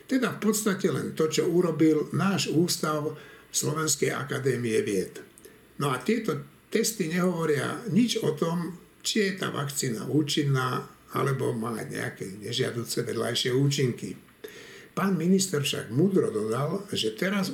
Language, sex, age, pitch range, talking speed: Slovak, male, 60-79, 130-175 Hz, 130 wpm